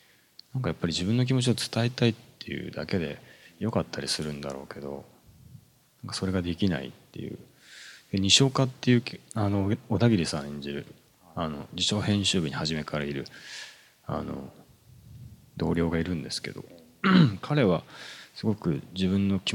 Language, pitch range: Japanese, 85-110 Hz